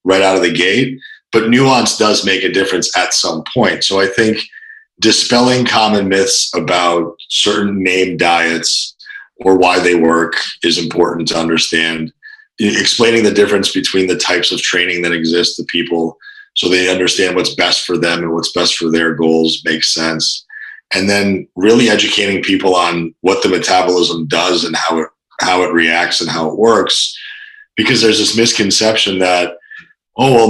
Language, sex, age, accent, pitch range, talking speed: English, male, 40-59, American, 85-110 Hz, 170 wpm